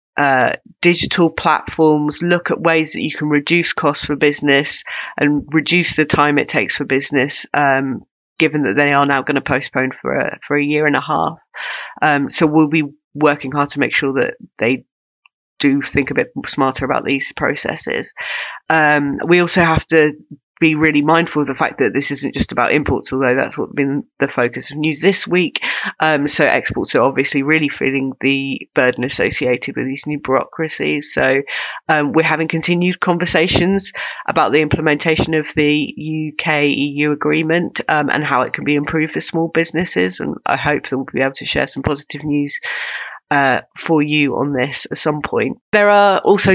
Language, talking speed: English, 185 wpm